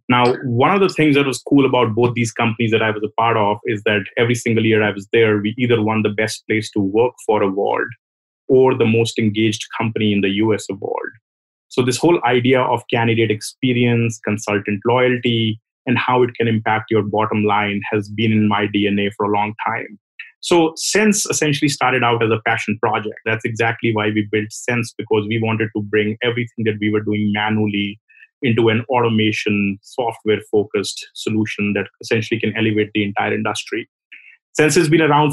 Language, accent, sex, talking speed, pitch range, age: English, Indian, male, 195 wpm, 110-125 Hz, 30-49